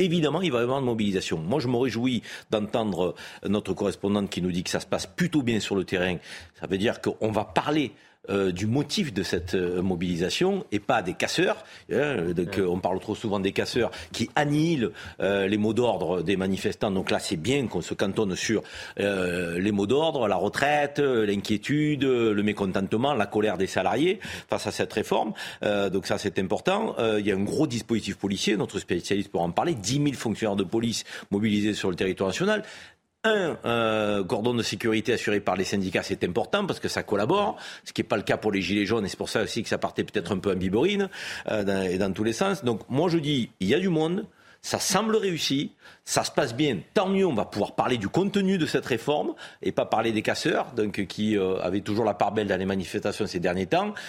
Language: French